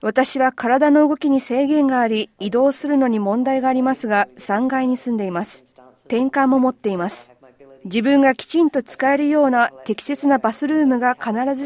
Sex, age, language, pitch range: female, 40-59, Japanese, 205-275 Hz